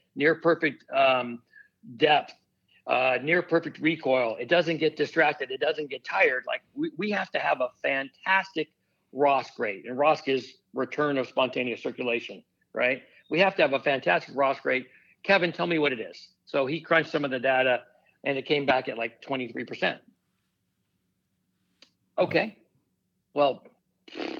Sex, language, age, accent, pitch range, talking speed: male, English, 60-79, American, 130-165 Hz, 155 wpm